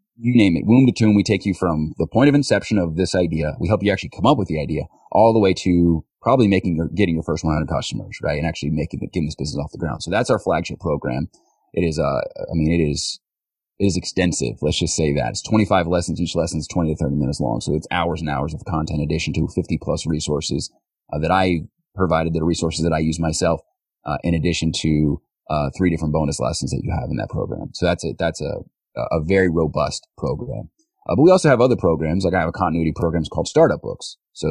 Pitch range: 80-95 Hz